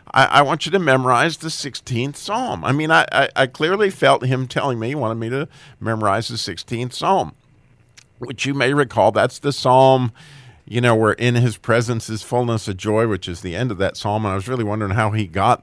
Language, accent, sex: English, American, male